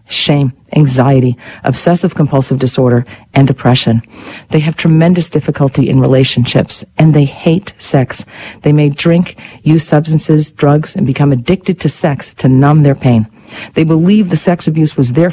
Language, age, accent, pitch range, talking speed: English, 50-69, American, 125-155 Hz, 155 wpm